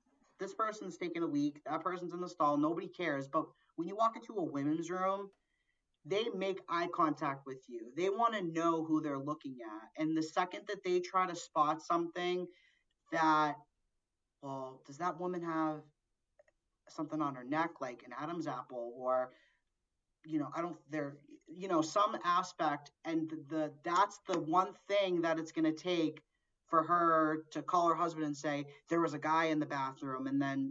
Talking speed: 185 wpm